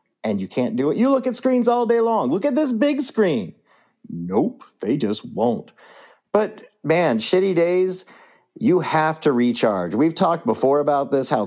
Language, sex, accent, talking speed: English, male, American, 185 wpm